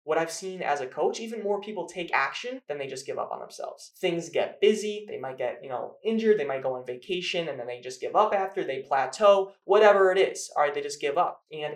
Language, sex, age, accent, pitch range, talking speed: English, male, 20-39, American, 155-220 Hz, 260 wpm